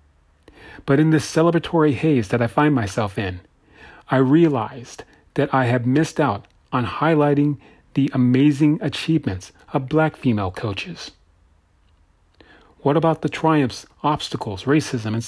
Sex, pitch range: male, 105-150 Hz